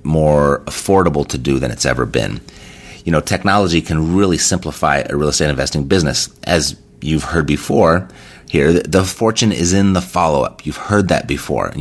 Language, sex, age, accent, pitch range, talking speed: English, male, 30-49, American, 75-95 Hz, 180 wpm